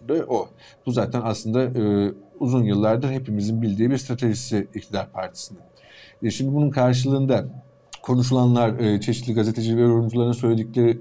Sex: male